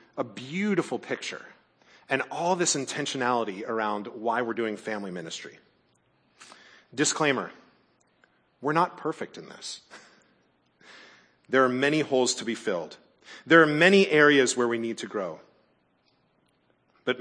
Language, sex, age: English, male, 40-59